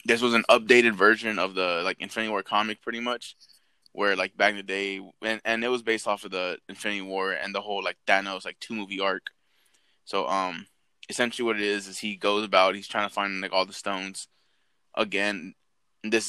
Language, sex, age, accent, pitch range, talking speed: English, male, 20-39, American, 100-115 Hz, 215 wpm